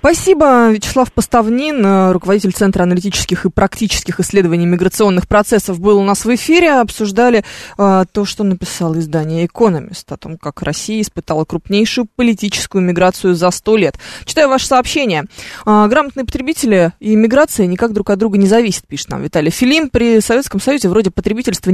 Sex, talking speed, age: female, 155 wpm, 20-39